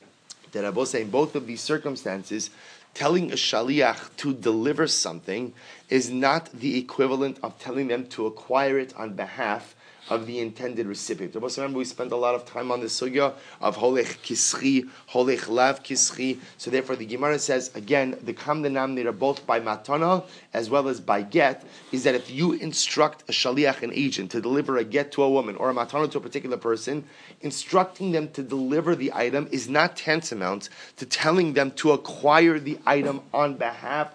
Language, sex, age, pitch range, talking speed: English, male, 30-49, 125-150 Hz, 175 wpm